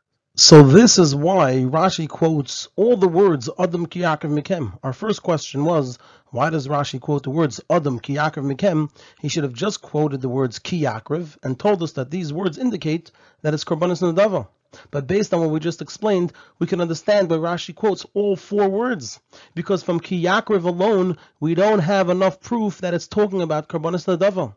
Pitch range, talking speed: 150-195 Hz, 180 wpm